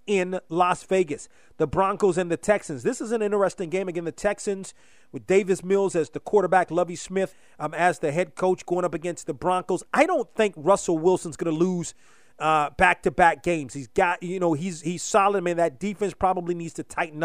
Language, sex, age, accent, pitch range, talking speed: English, male, 30-49, American, 170-200 Hz, 205 wpm